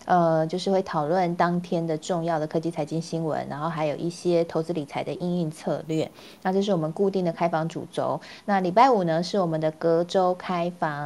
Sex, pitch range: female, 165-200 Hz